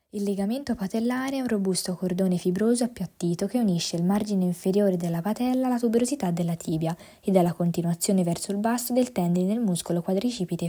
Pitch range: 170-215 Hz